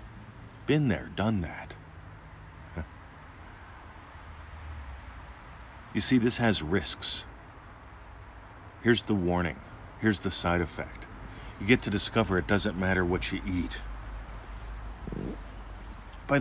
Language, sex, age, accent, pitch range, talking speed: English, male, 50-69, American, 80-100 Hz, 100 wpm